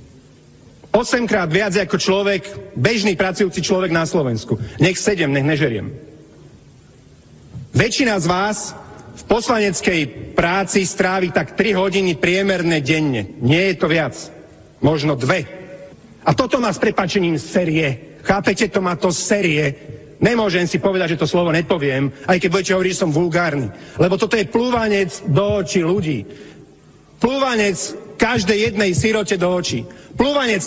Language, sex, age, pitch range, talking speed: Slovak, male, 40-59, 175-220 Hz, 135 wpm